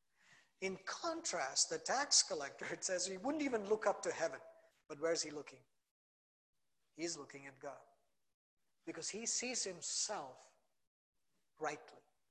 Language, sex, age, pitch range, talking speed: English, male, 50-69, 165-220 Hz, 135 wpm